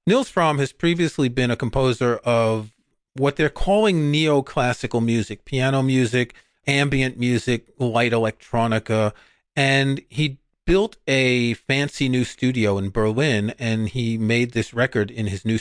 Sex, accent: male, American